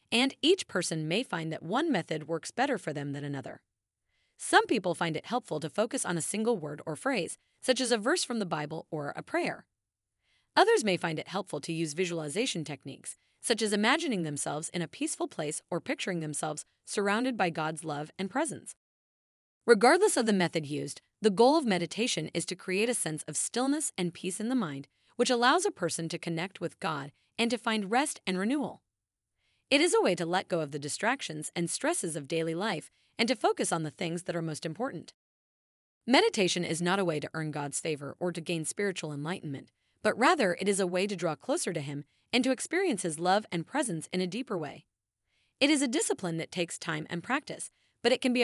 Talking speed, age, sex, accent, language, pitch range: 215 wpm, 30-49, female, American, English, 160-235 Hz